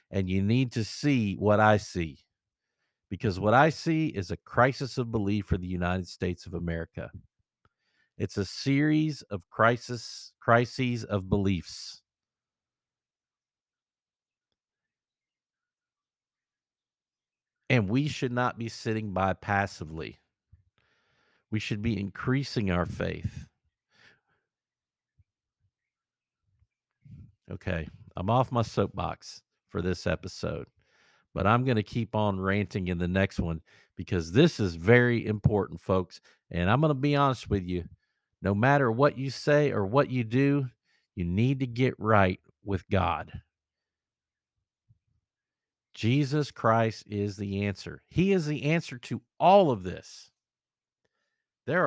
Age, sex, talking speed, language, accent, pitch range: 50-69, male, 125 wpm, English, American, 95-135 Hz